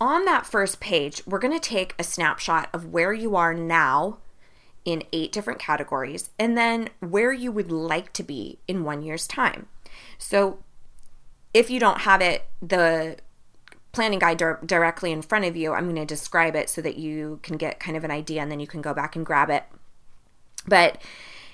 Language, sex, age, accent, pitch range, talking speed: English, female, 20-39, American, 160-200 Hz, 190 wpm